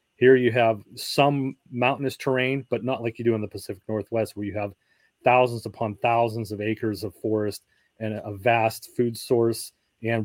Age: 30-49